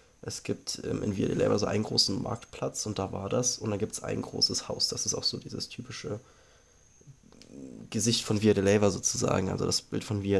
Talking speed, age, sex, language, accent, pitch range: 225 wpm, 20-39, male, German, German, 105-125 Hz